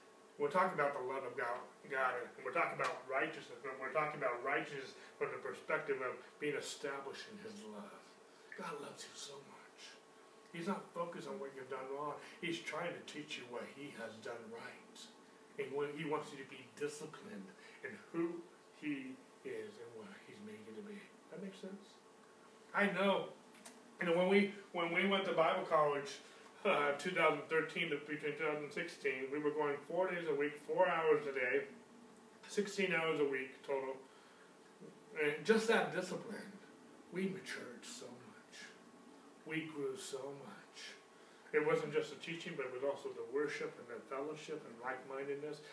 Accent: American